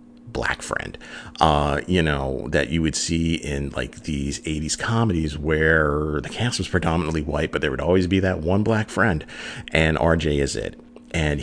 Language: English